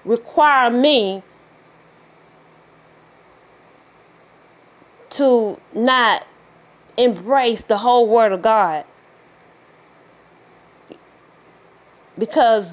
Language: English